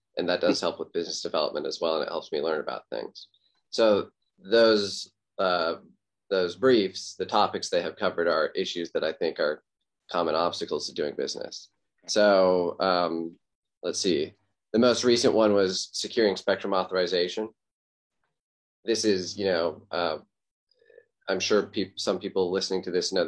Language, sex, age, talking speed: English, male, 20-39, 160 wpm